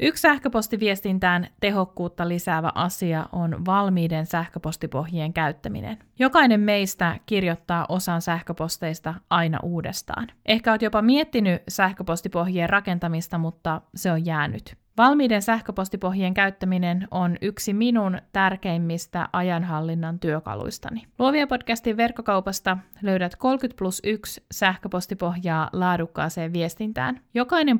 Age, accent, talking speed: 20-39, native, 100 wpm